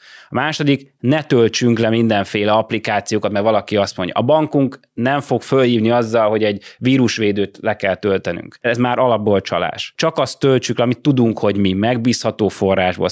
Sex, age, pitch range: male, 30-49, 110-130 Hz